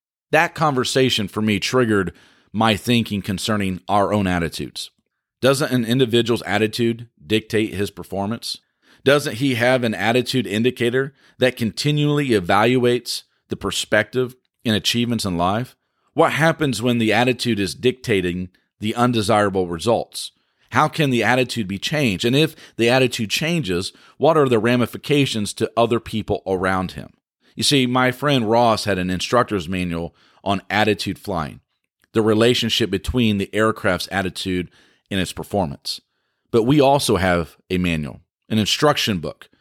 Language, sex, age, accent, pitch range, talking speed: English, male, 40-59, American, 100-125 Hz, 140 wpm